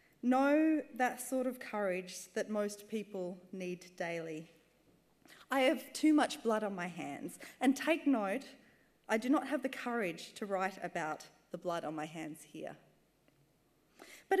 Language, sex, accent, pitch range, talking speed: English, female, Australian, 185-250 Hz, 155 wpm